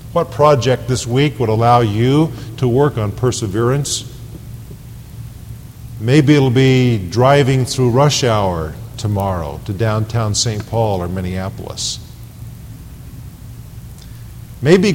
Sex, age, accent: male, 50-69, American